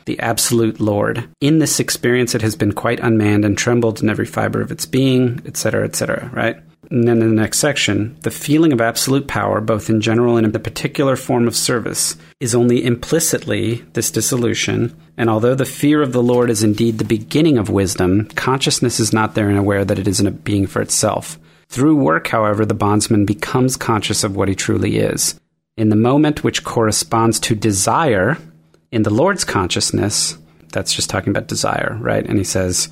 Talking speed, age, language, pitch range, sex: 195 wpm, 40-59, English, 105-120 Hz, male